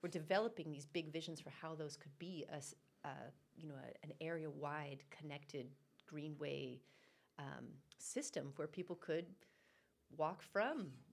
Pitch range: 160-190 Hz